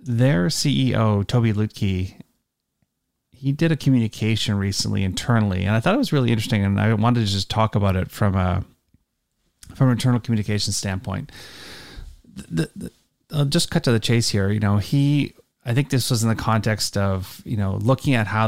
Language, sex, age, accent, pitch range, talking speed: English, male, 30-49, American, 100-120 Hz, 185 wpm